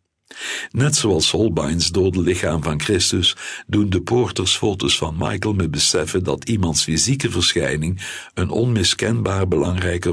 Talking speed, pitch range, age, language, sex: 125 wpm, 85-105 Hz, 60-79, Dutch, male